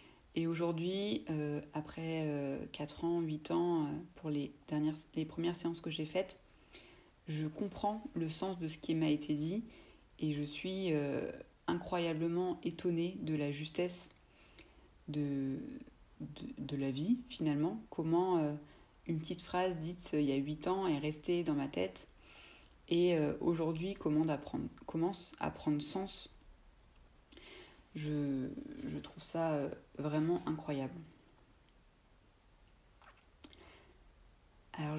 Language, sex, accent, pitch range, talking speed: French, female, French, 150-175 Hz, 130 wpm